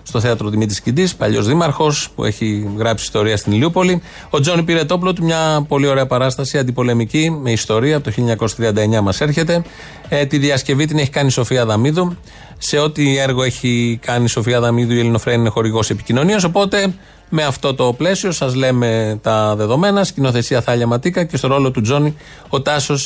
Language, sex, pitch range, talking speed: Greek, male, 120-155 Hz, 180 wpm